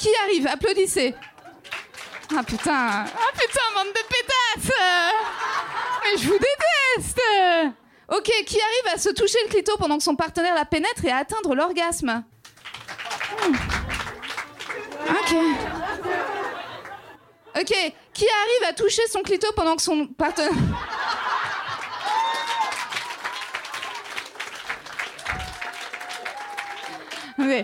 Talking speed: 100 wpm